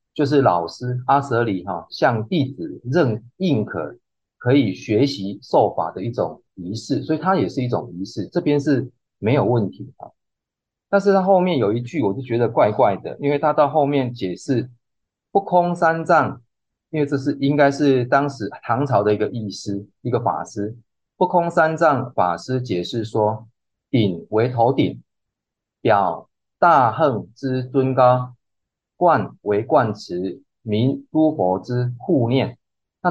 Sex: male